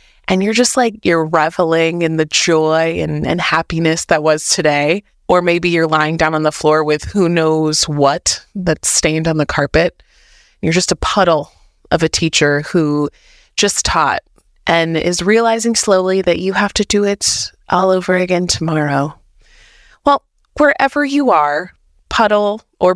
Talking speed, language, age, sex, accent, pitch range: 160 wpm, English, 20-39, female, American, 160-205 Hz